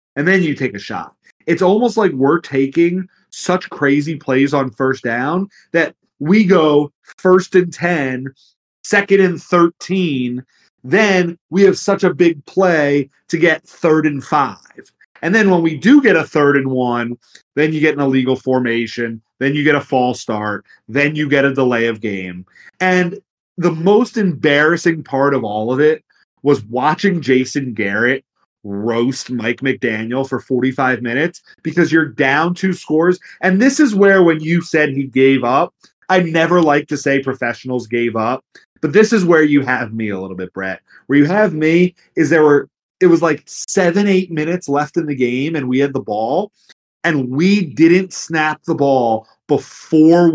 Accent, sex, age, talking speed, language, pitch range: American, male, 30-49, 180 wpm, English, 130-175 Hz